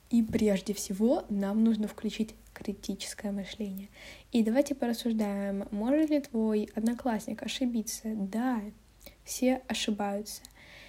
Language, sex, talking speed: Russian, female, 105 wpm